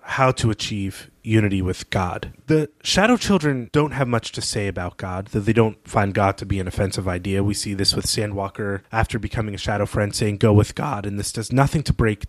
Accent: American